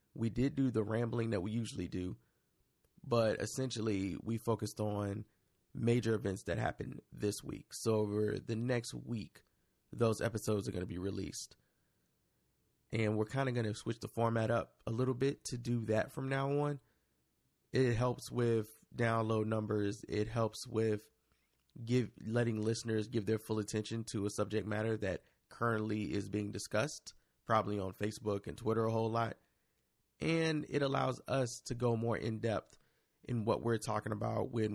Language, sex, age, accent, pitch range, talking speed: English, male, 20-39, American, 105-120 Hz, 170 wpm